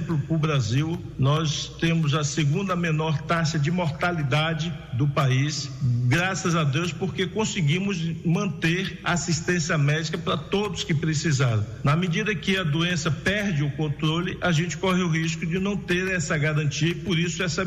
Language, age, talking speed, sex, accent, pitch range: Portuguese, 50-69, 160 wpm, male, Brazilian, 145-175 Hz